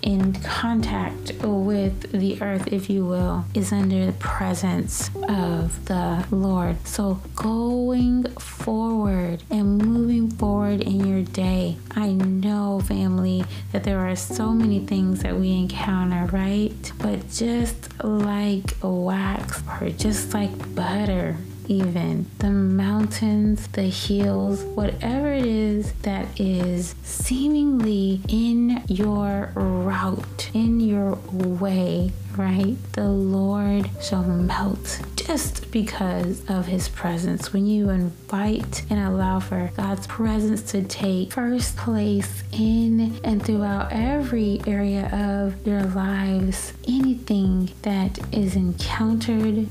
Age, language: 20-39, English